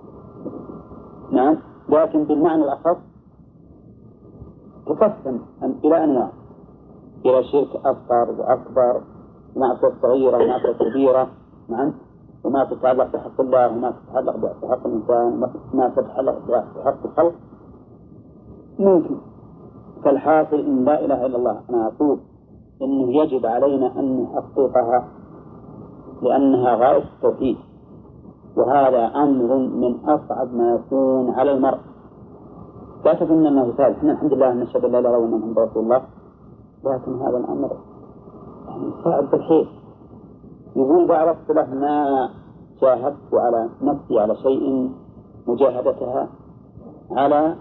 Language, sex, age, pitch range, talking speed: Arabic, male, 50-69, 125-150 Hz, 105 wpm